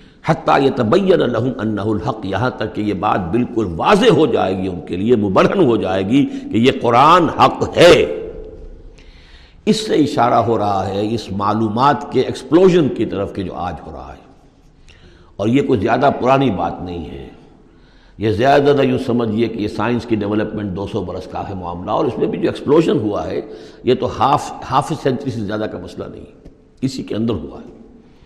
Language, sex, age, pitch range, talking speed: Urdu, male, 60-79, 100-130 Hz, 200 wpm